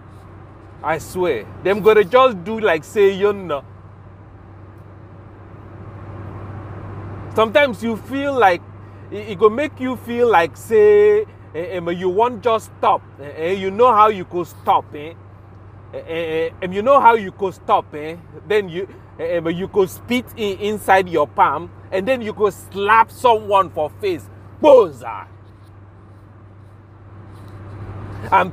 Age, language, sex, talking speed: 30-49, English, male, 125 wpm